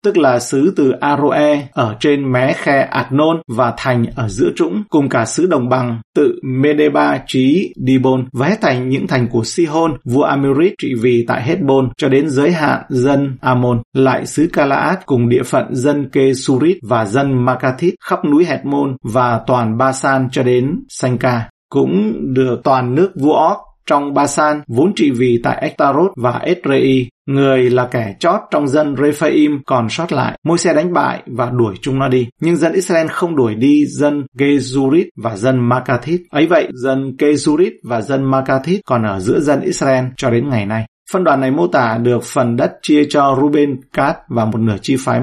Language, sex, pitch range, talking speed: Vietnamese, male, 125-145 Hz, 185 wpm